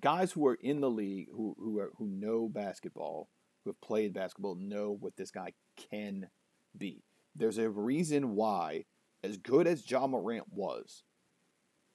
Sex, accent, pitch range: male, American, 110-165 Hz